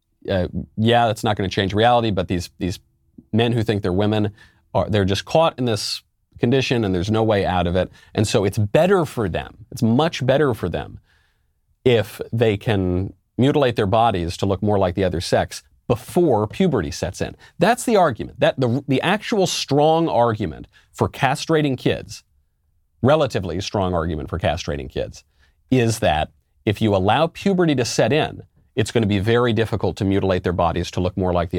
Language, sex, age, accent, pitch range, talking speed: English, male, 40-59, American, 90-120 Hz, 190 wpm